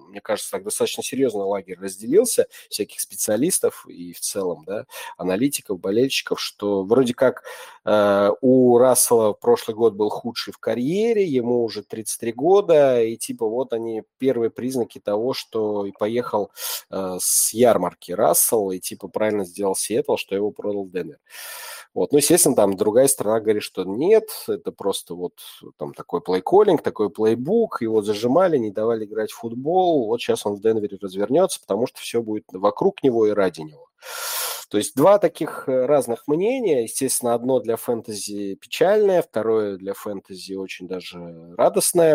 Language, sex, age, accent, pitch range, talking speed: Russian, male, 30-49, native, 105-170 Hz, 160 wpm